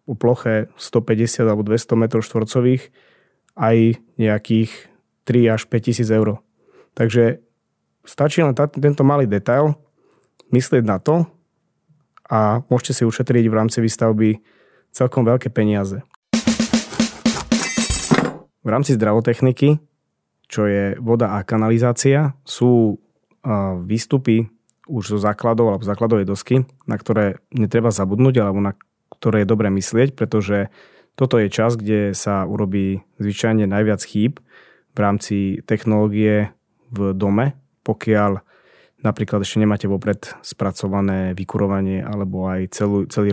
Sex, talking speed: male, 115 wpm